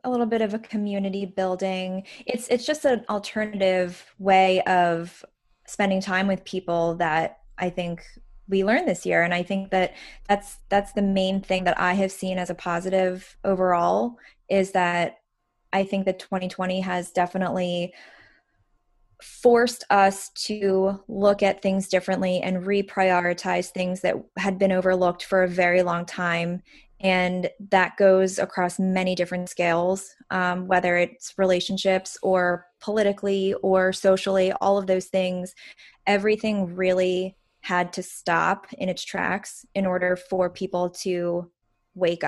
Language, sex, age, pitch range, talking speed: English, female, 20-39, 180-200 Hz, 145 wpm